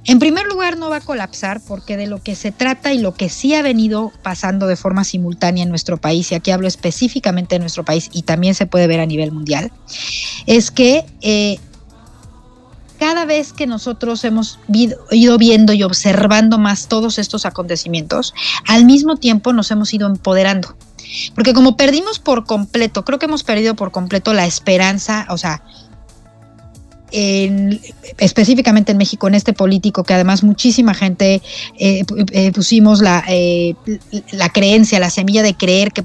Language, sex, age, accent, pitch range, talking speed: Spanish, female, 40-59, Mexican, 180-225 Hz, 170 wpm